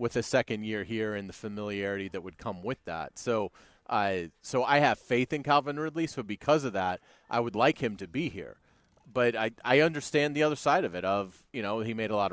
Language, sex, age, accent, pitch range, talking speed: English, male, 30-49, American, 95-125 Hz, 240 wpm